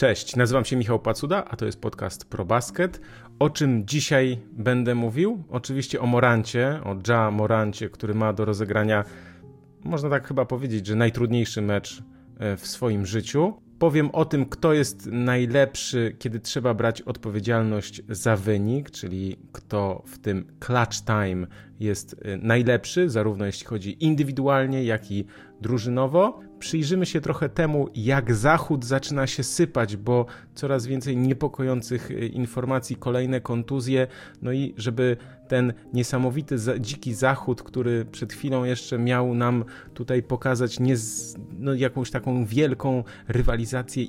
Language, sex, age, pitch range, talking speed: Polish, male, 30-49, 110-135 Hz, 135 wpm